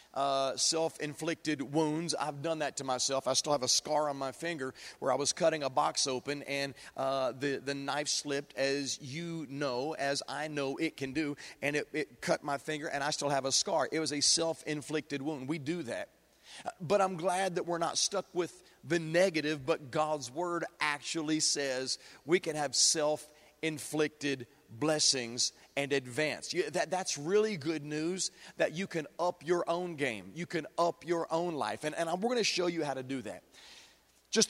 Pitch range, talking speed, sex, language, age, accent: 145-175 Hz, 190 wpm, male, English, 40-59, American